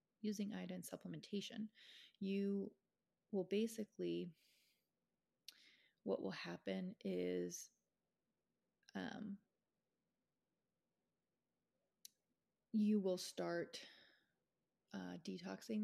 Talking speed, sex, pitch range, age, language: 60 wpm, female, 185-225 Hz, 30-49, English